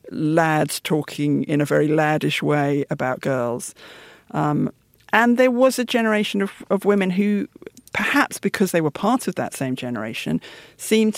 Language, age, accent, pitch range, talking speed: English, 50-69, British, 145-185 Hz, 155 wpm